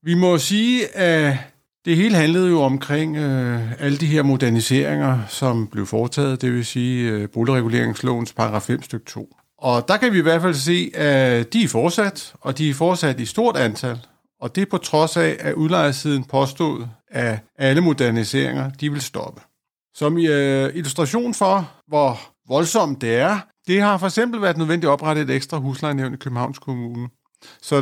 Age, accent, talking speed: 50-69, native, 170 wpm